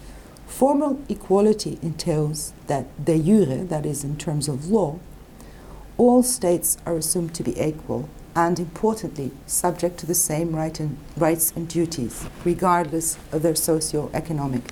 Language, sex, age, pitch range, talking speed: English, female, 60-79, 155-210 Hz, 130 wpm